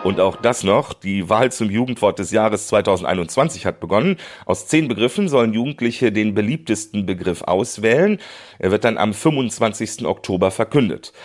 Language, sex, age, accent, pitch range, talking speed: German, male, 40-59, German, 95-130 Hz, 155 wpm